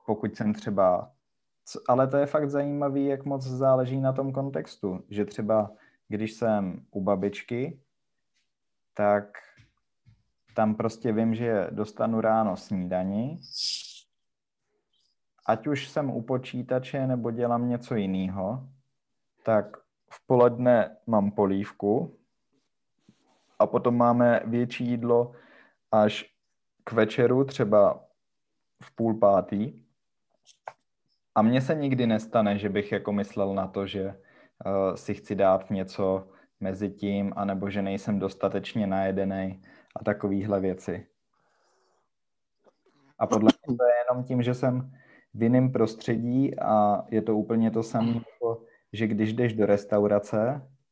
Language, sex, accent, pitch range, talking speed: Czech, male, native, 100-125 Hz, 125 wpm